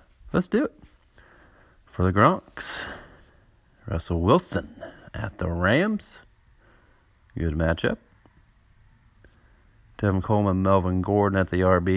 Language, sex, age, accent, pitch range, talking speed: English, male, 40-59, American, 85-115 Hz, 100 wpm